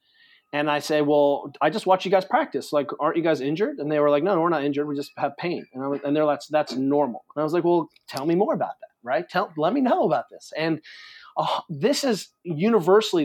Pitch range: 150-200 Hz